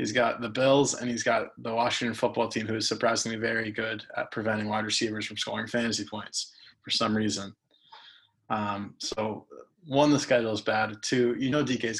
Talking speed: 195 wpm